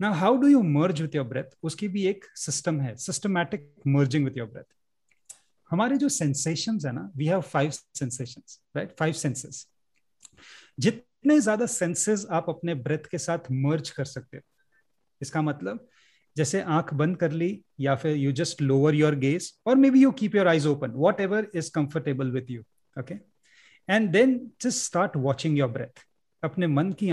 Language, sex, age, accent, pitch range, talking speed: Hindi, male, 30-49, native, 135-185 Hz, 120 wpm